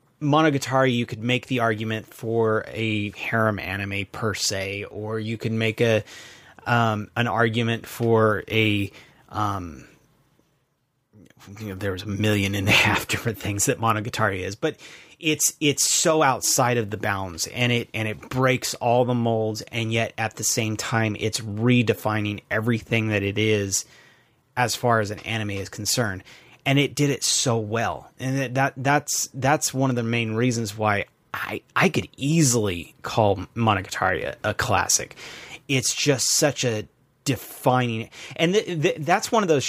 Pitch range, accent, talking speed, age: 110-135 Hz, American, 165 wpm, 30-49